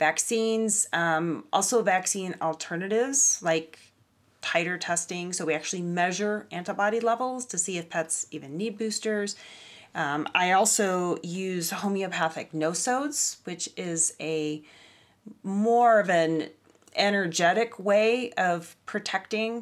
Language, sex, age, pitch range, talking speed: English, female, 30-49, 160-195 Hz, 115 wpm